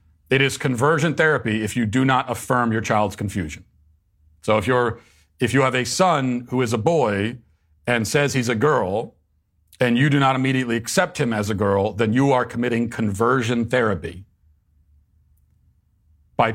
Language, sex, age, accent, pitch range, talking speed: English, male, 40-59, American, 90-125 Hz, 165 wpm